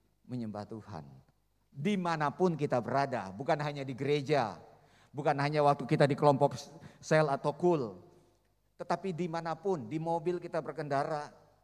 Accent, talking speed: native, 125 wpm